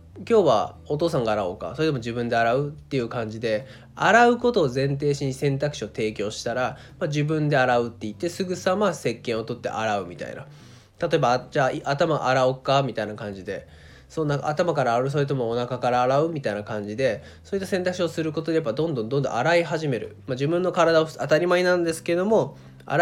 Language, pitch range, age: Japanese, 120-175 Hz, 20-39